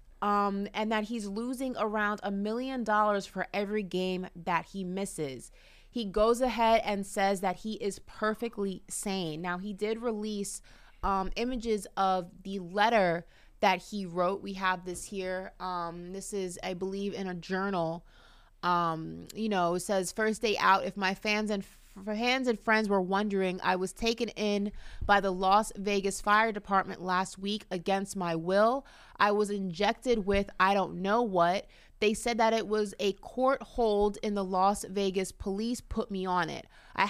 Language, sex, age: English, female, 20-39